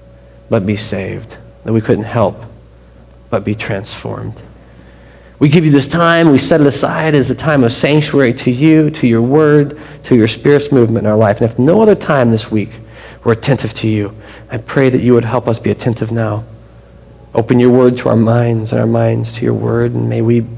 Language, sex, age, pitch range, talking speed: English, male, 40-59, 110-145 Hz, 210 wpm